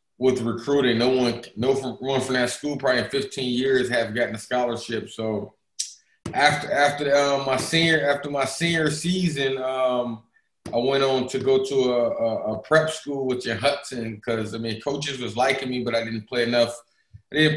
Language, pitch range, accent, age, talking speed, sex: English, 120-140 Hz, American, 20-39, 190 wpm, male